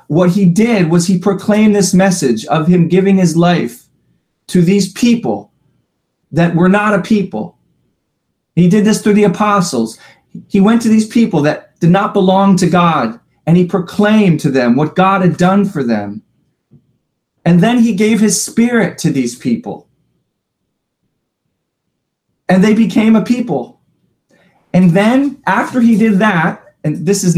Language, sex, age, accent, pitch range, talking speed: English, male, 30-49, American, 170-210 Hz, 160 wpm